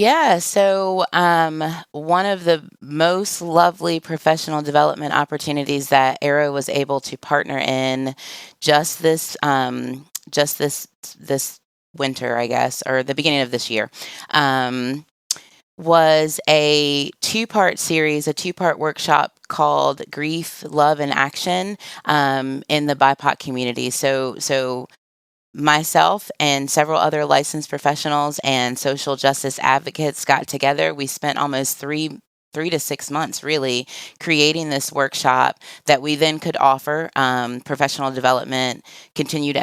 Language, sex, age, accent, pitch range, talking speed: English, female, 20-39, American, 130-150 Hz, 135 wpm